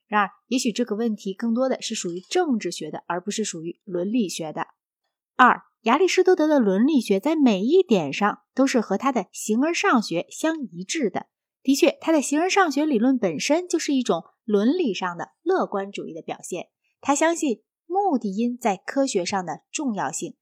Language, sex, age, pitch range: Chinese, female, 20-39, 205-285 Hz